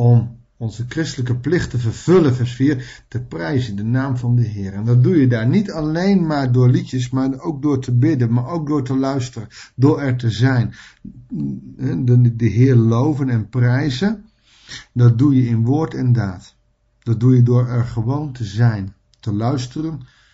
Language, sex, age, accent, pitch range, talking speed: Dutch, male, 50-69, Dutch, 120-130 Hz, 180 wpm